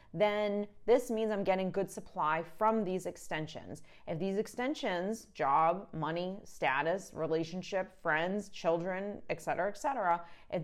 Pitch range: 170-210 Hz